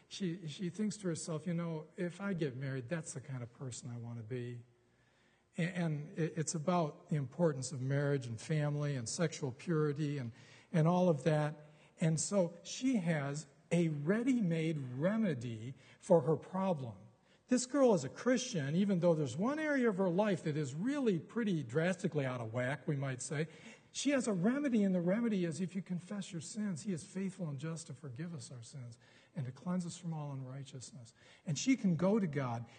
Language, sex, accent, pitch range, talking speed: English, male, American, 140-190 Hz, 200 wpm